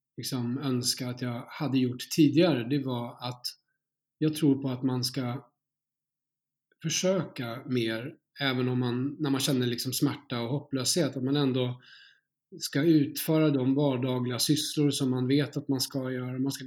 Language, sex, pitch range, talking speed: Swedish, male, 125-145 Hz, 150 wpm